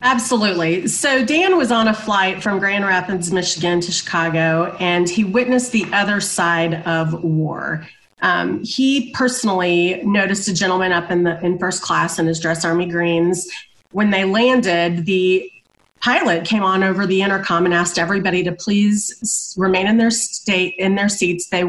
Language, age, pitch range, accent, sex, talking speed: English, 30-49, 170-210 Hz, American, female, 170 wpm